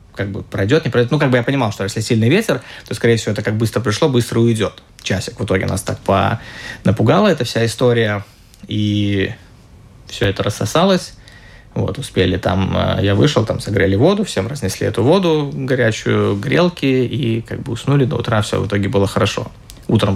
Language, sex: Russian, male